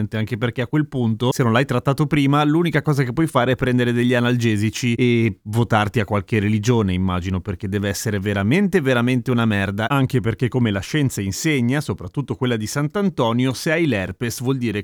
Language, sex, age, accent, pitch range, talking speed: Italian, male, 30-49, native, 115-160 Hz, 190 wpm